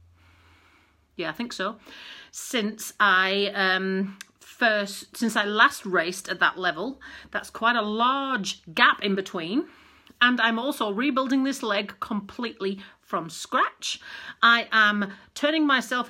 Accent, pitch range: British, 195-260 Hz